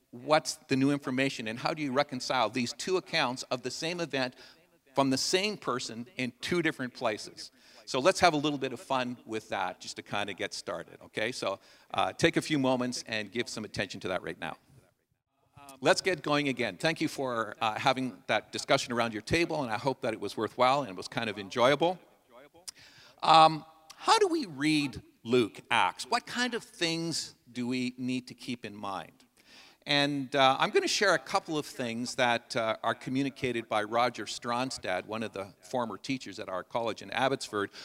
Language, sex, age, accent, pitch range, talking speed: English, male, 50-69, American, 115-155 Hz, 200 wpm